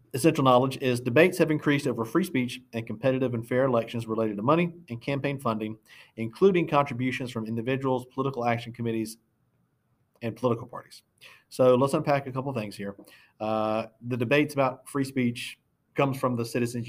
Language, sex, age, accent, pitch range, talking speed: English, male, 40-59, American, 110-130 Hz, 170 wpm